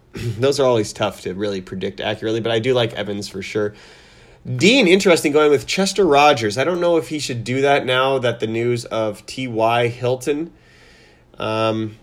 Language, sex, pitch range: English, male, 105-130 Hz